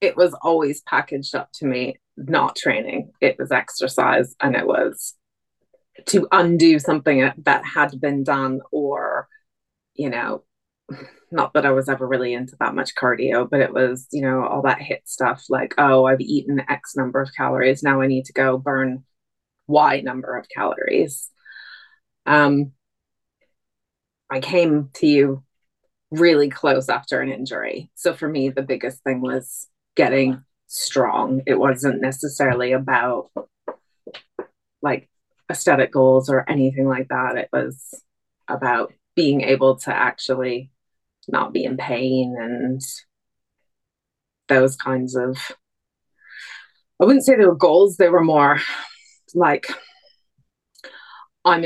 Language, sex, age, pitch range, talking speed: English, female, 20-39, 130-150 Hz, 135 wpm